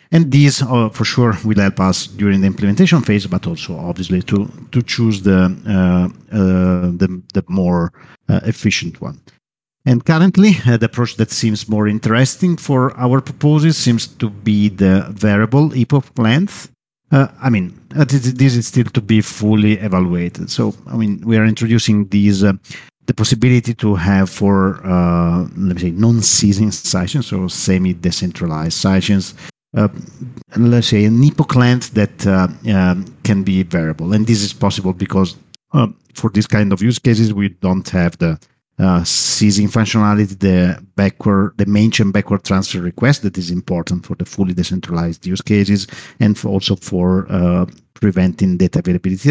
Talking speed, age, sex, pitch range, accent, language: 165 wpm, 50-69, male, 95-120 Hz, Italian, English